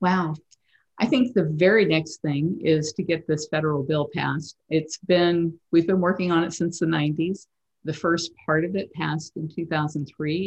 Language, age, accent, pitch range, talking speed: English, 50-69, American, 145-170 Hz, 185 wpm